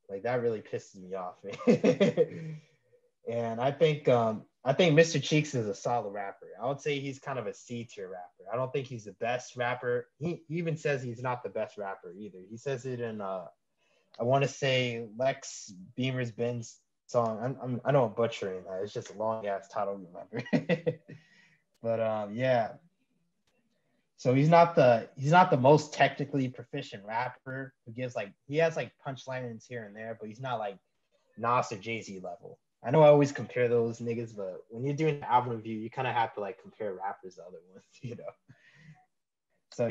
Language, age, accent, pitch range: English, 20-39, American, 120-150 Hz